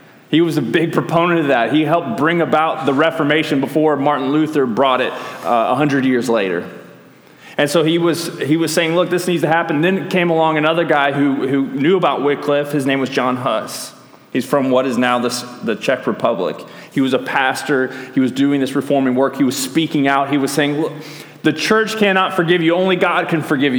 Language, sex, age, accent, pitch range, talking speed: English, male, 30-49, American, 130-160 Hz, 215 wpm